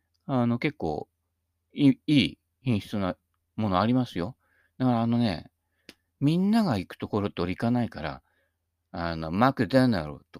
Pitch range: 85-135 Hz